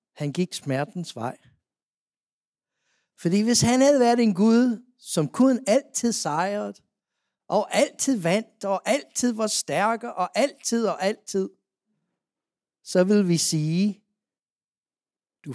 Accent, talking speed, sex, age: native, 120 wpm, male, 60-79